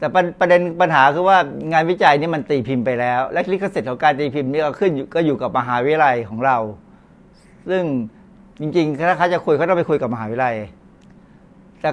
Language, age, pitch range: Thai, 60-79, 135-185 Hz